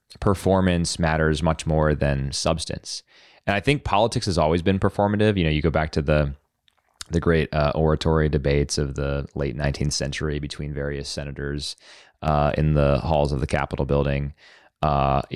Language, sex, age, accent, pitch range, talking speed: English, male, 20-39, American, 75-90 Hz, 170 wpm